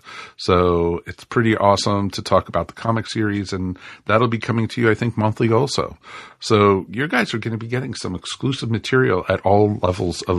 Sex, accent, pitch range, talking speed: male, American, 95-115 Hz, 200 wpm